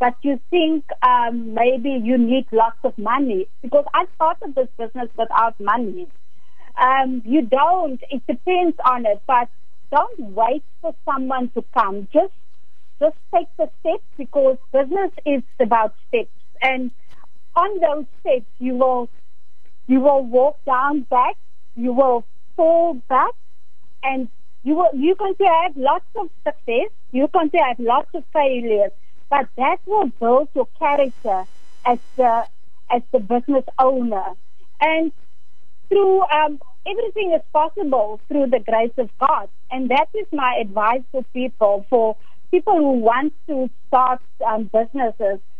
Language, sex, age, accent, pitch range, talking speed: English, female, 50-69, Indian, 245-320 Hz, 145 wpm